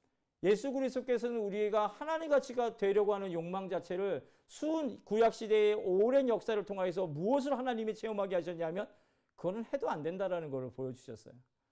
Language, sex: Korean, male